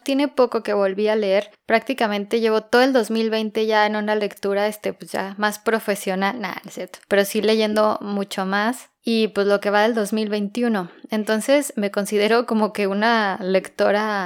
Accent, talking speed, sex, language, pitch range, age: Mexican, 150 wpm, female, Spanish, 200-240 Hz, 20-39